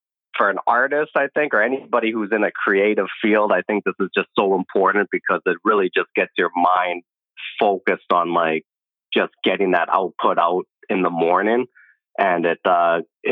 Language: English